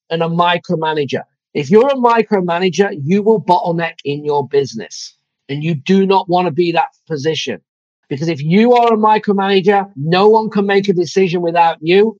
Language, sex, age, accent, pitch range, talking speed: English, male, 40-59, British, 150-195 Hz, 175 wpm